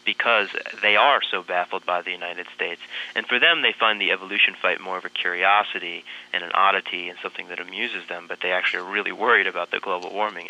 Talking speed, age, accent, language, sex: 225 wpm, 30-49, American, English, male